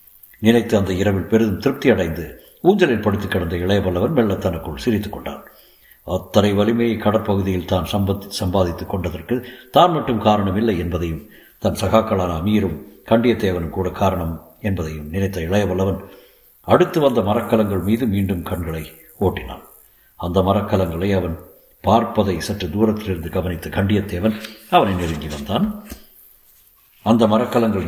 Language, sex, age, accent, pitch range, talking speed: Tamil, male, 60-79, native, 90-115 Hz, 110 wpm